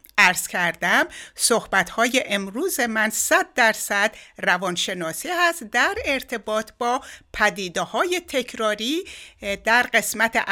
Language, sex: Persian, female